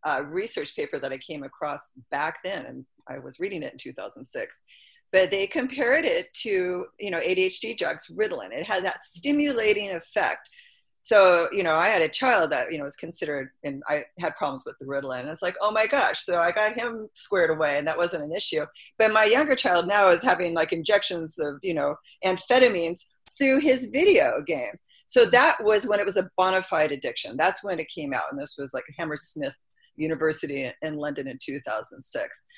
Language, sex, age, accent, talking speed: English, female, 40-59, American, 205 wpm